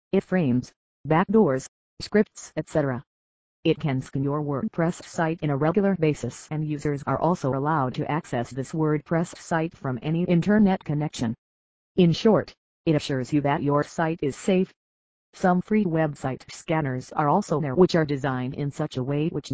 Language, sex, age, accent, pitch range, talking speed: English, female, 40-59, American, 140-180 Hz, 165 wpm